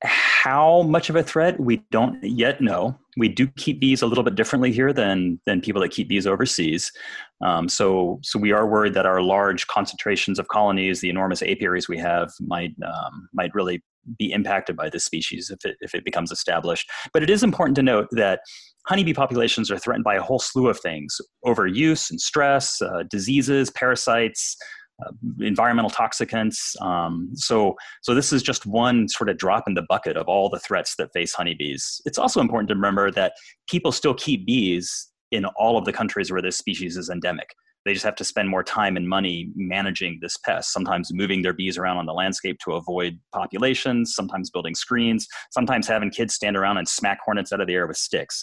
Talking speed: 200 wpm